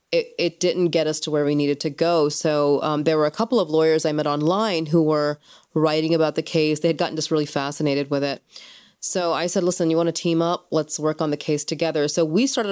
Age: 30-49